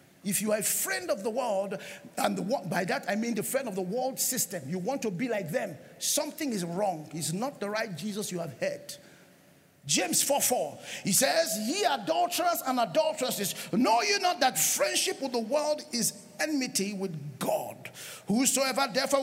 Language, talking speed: English, 185 wpm